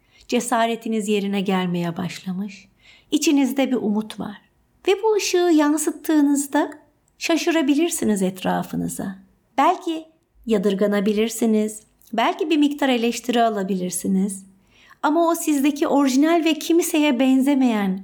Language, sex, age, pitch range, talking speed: Turkish, female, 50-69, 205-295 Hz, 95 wpm